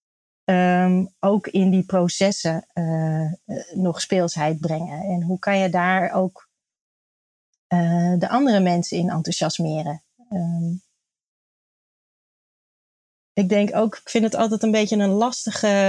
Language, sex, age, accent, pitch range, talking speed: Dutch, female, 30-49, Dutch, 180-210 Hz, 115 wpm